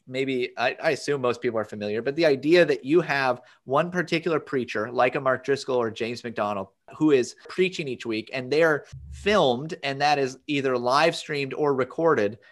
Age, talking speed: 30-49, 190 wpm